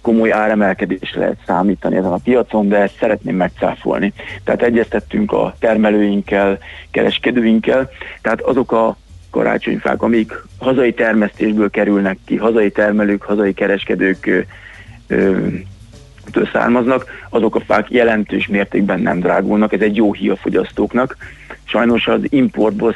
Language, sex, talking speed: Hungarian, male, 120 wpm